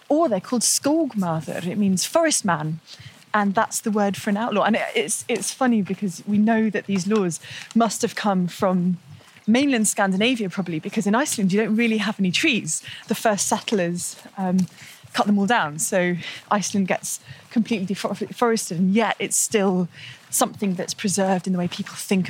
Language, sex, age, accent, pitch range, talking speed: English, female, 20-39, British, 180-225 Hz, 180 wpm